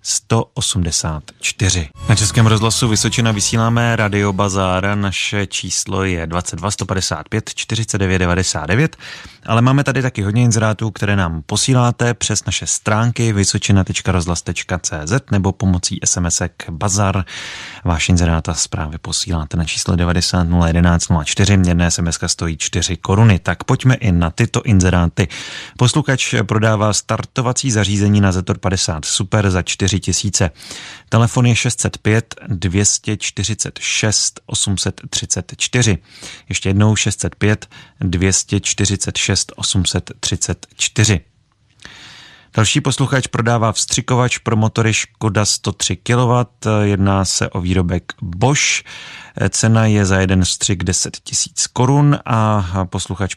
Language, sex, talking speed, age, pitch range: Czech, male, 105 wpm, 30-49, 90-115 Hz